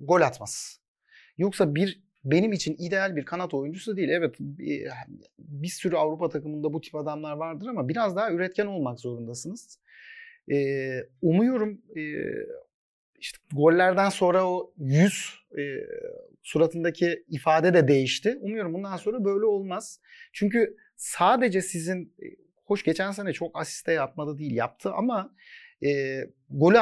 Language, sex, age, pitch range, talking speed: Turkish, male, 40-59, 150-210 Hz, 130 wpm